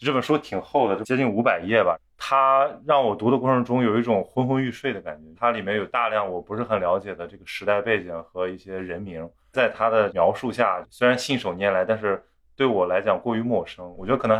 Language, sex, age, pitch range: Chinese, male, 20-39, 95-120 Hz